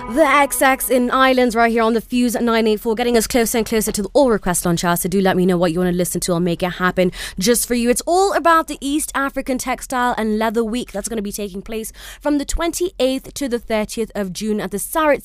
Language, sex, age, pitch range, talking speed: English, female, 20-39, 210-265 Hz, 260 wpm